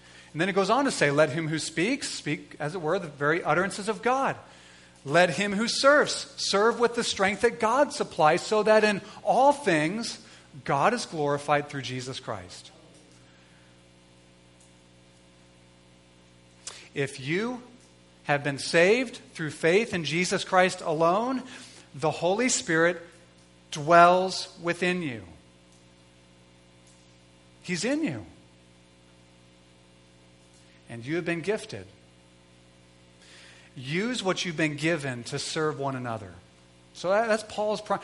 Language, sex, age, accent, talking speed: English, male, 40-59, American, 125 wpm